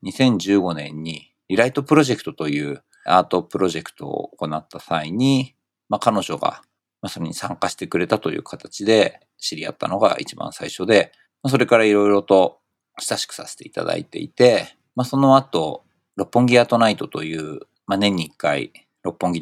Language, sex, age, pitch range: Japanese, male, 50-69, 85-125 Hz